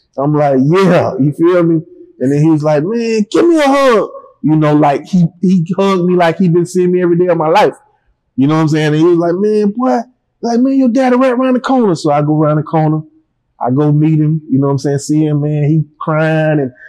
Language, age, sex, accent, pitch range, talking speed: English, 20-39, male, American, 145-175 Hz, 265 wpm